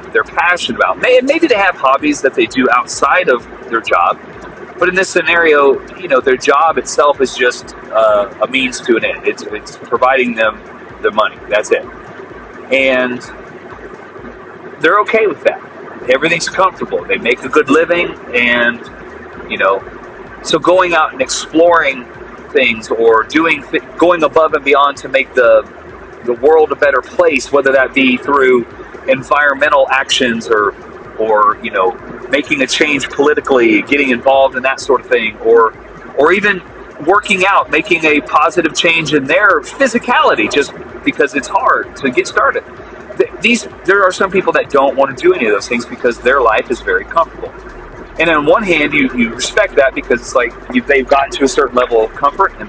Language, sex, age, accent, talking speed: English, male, 40-59, American, 180 wpm